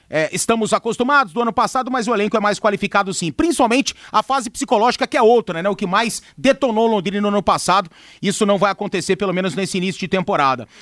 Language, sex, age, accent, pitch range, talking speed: Portuguese, male, 40-59, Brazilian, 225-280 Hz, 220 wpm